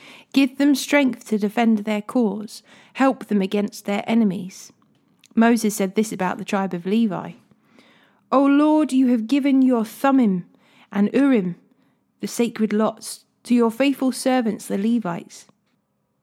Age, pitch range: 30-49, 210-255 Hz